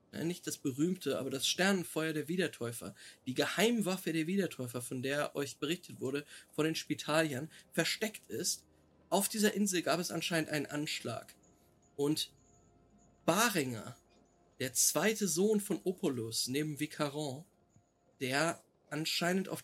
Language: German